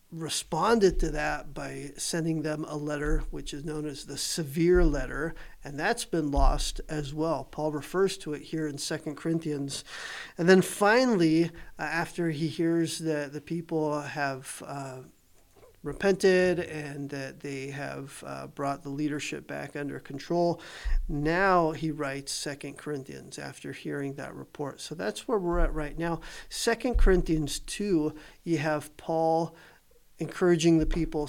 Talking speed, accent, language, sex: 150 wpm, American, English, male